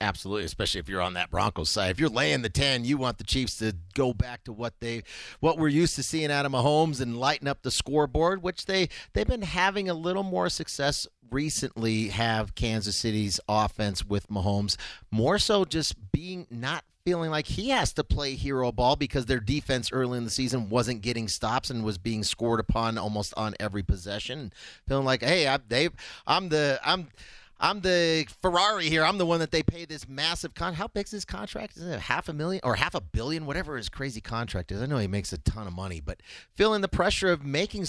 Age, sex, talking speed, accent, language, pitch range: 40-59, male, 220 wpm, American, English, 110-145 Hz